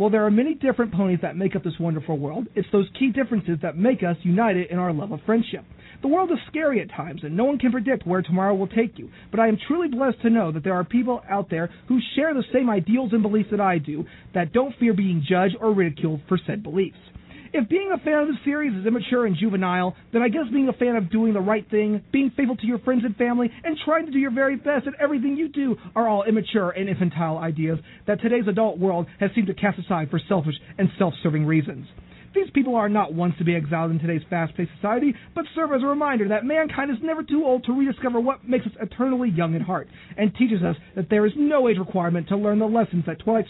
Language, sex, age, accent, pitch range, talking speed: English, male, 40-59, American, 180-245 Hz, 250 wpm